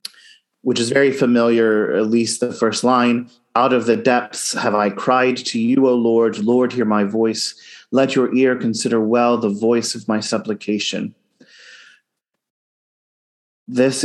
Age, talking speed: 30-49, 150 wpm